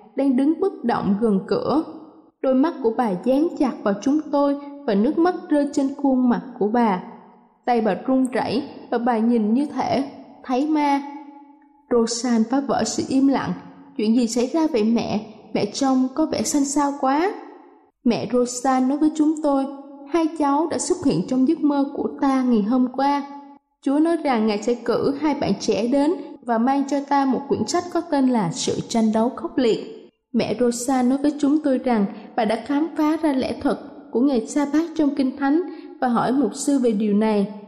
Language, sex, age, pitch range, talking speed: Vietnamese, female, 20-39, 235-290 Hz, 200 wpm